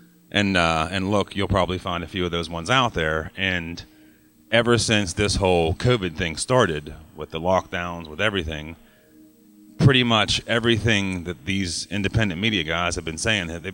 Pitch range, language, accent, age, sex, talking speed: 85-105 Hz, English, American, 30-49, male, 170 wpm